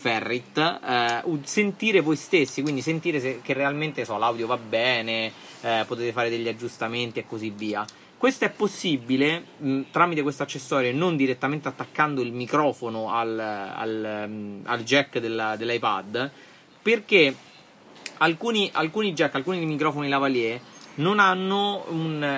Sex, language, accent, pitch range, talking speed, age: male, Italian, native, 125-170 Hz, 135 wpm, 30-49